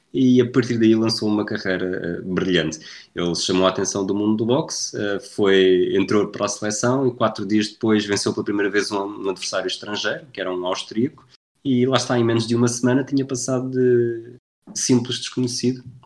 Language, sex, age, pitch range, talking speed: Portuguese, male, 20-39, 95-120 Hz, 195 wpm